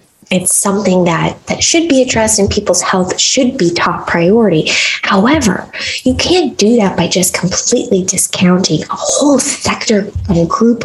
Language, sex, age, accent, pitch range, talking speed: English, female, 20-39, American, 175-255 Hz, 155 wpm